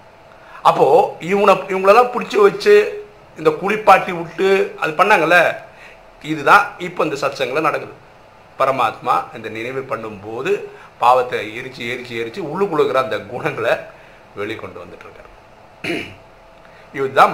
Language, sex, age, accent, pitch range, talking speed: Tamil, male, 50-69, native, 155-255 Hz, 105 wpm